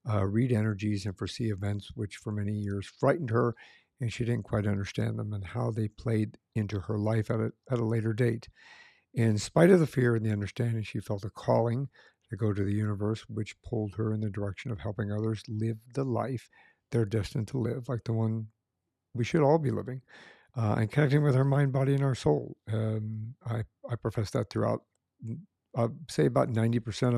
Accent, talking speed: American, 205 wpm